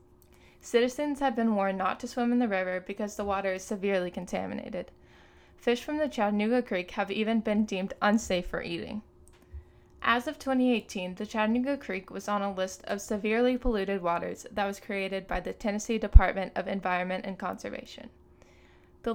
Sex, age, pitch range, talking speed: female, 10-29, 185-225 Hz, 170 wpm